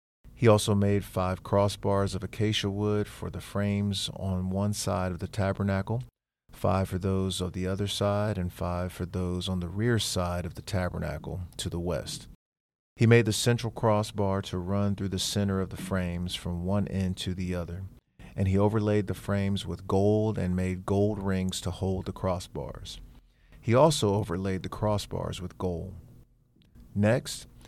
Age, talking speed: 40-59, 175 wpm